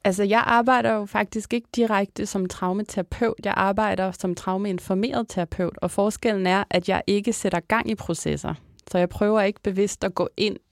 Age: 20-39